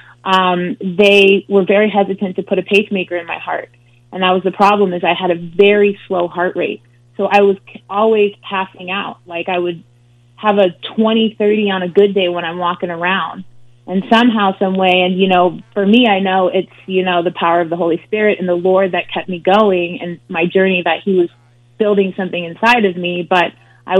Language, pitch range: English, 175-200 Hz